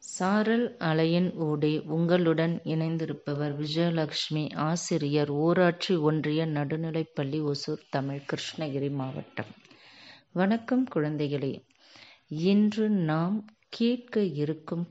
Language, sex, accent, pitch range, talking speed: Tamil, female, native, 150-180 Hz, 85 wpm